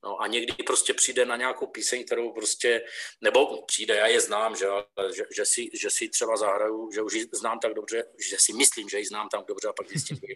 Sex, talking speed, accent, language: male, 240 wpm, native, Czech